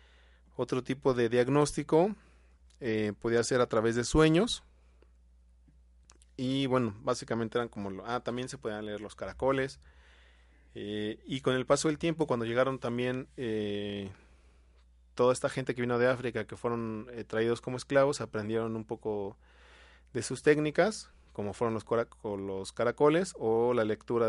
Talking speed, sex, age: 150 wpm, male, 30-49